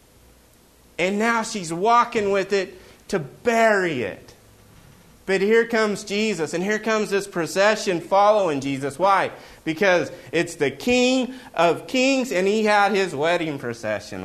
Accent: American